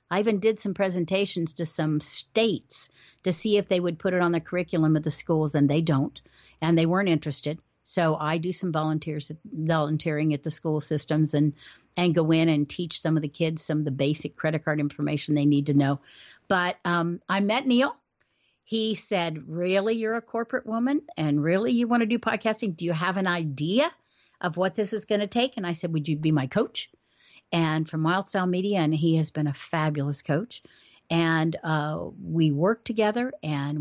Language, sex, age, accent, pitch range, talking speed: English, female, 50-69, American, 155-195 Hz, 205 wpm